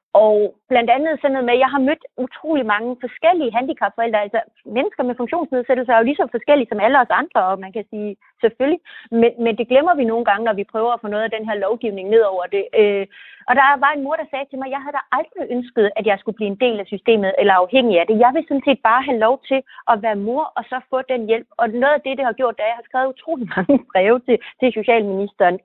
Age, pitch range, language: 30-49, 215-265 Hz, Danish